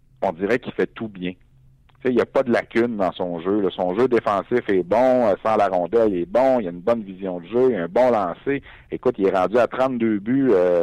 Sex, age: male, 60-79